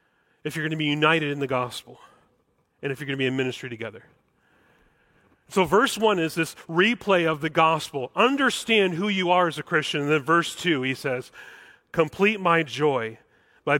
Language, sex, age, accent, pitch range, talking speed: English, male, 40-59, American, 140-185 Hz, 185 wpm